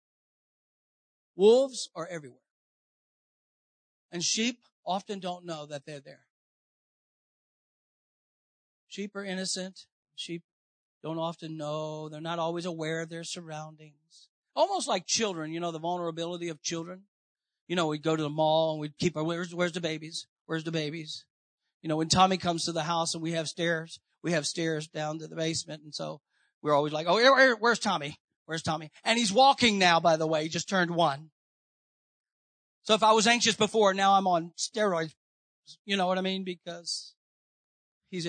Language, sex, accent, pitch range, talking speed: English, male, American, 155-205 Hz, 170 wpm